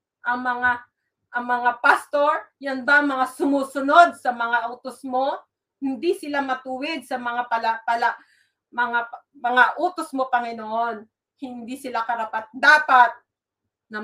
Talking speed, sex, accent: 130 wpm, female, Filipino